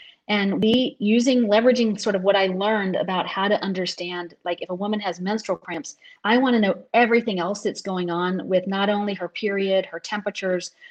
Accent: American